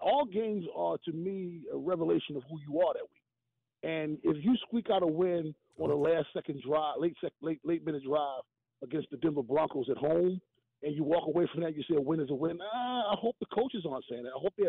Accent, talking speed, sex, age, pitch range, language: American, 250 wpm, male, 40-59, 150-230 Hz, English